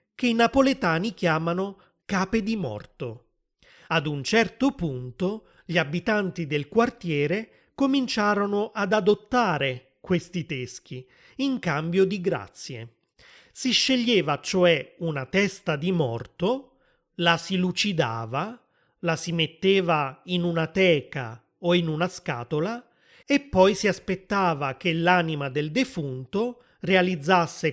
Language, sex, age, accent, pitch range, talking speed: Italian, male, 30-49, native, 155-220 Hz, 115 wpm